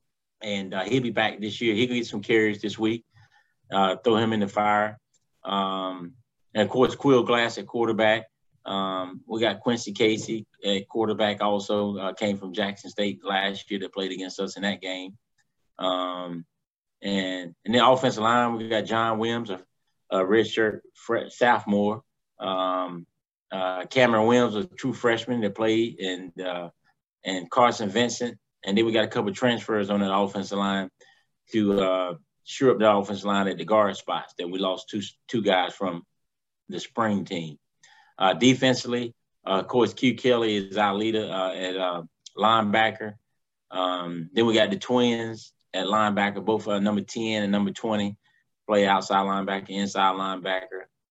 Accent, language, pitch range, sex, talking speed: American, English, 95-115 Hz, male, 170 wpm